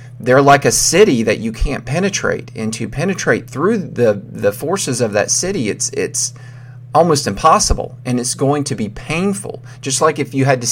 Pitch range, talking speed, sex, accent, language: 115-130 Hz, 190 wpm, male, American, English